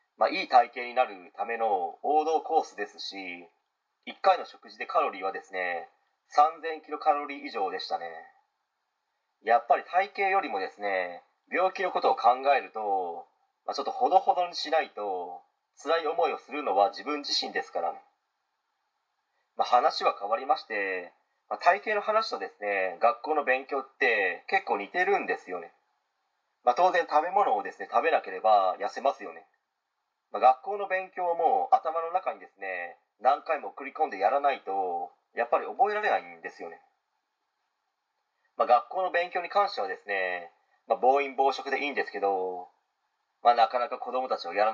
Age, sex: 40-59, male